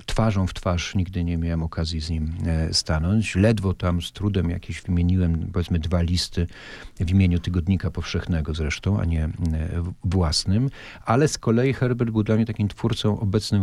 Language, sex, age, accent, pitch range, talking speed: Polish, male, 40-59, native, 90-110 Hz, 165 wpm